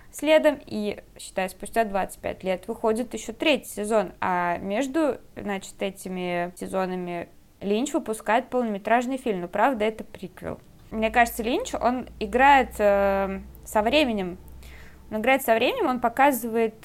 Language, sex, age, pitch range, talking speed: Russian, female, 20-39, 200-235 Hz, 130 wpm